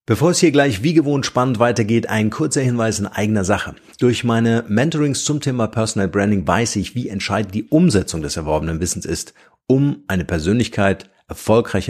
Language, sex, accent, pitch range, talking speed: German, male, German, 95-120 Hz, 175 wpm